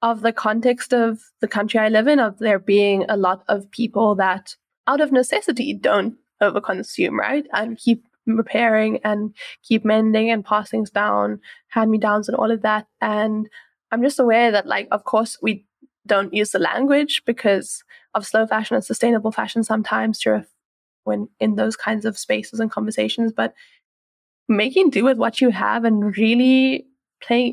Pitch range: 205-240 Hz